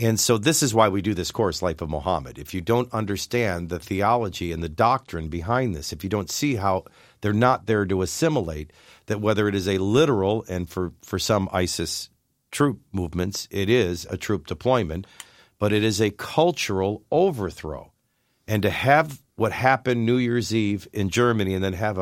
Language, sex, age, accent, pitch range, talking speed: English, male, 50-69, American, 90-115 Hz, 190 wpm